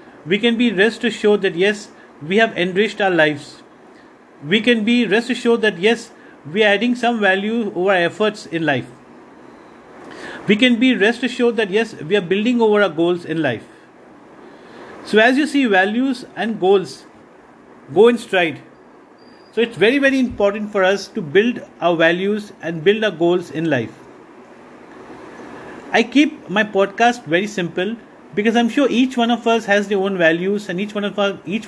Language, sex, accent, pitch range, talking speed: English, male, Indian, 185-235 Hz, 180 wpm